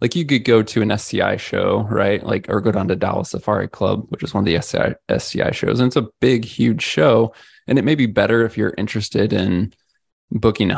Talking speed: 235 wpm